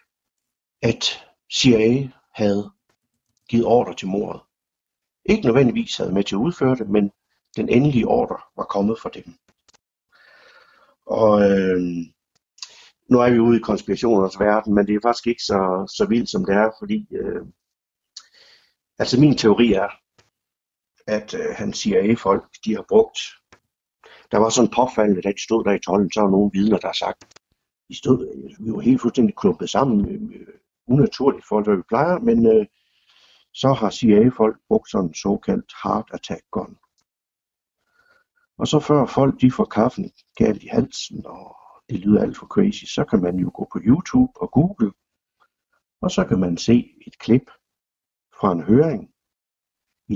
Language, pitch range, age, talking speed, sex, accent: Danish, 105-170 Hz, 60-79, 160 wpm, male, native